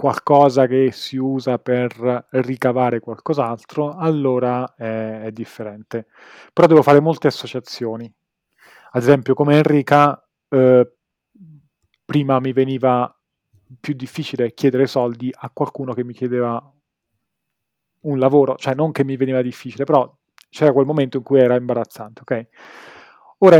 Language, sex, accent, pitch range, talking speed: Italian, male, native, 125-150 Hz, 130 wpm